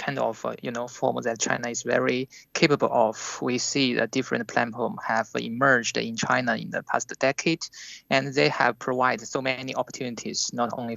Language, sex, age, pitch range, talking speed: English, male, 20-39, 125-160 Hz, 185 wpm